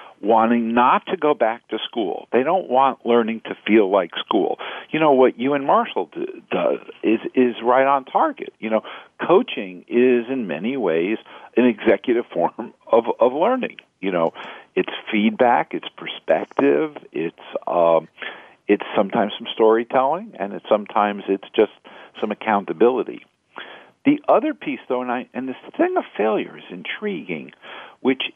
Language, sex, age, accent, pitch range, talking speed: English, male, 50-69, American, 110-150 Hz, 155 wpm